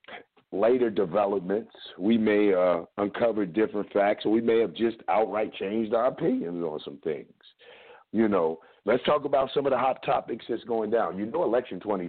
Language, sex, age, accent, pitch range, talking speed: English, male, 50-69, American, 95-120 Hz, 185 wpm